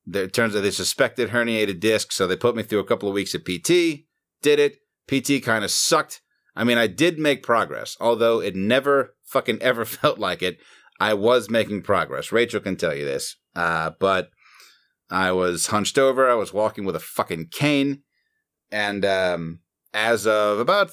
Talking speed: 190 wpm